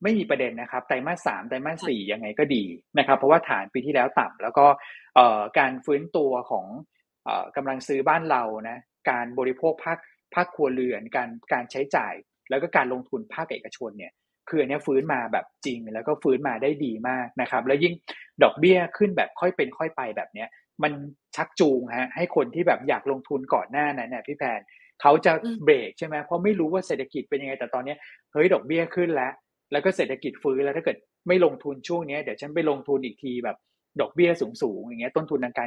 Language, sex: Thai, male